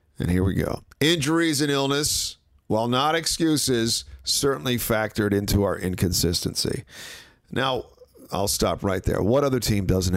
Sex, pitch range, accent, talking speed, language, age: male, 100-140 Hz, American, 140 wpm, English, 50-69